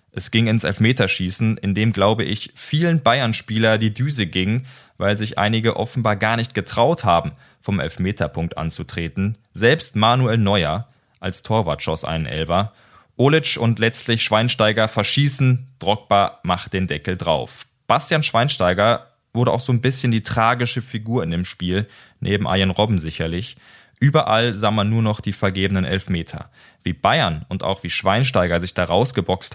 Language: German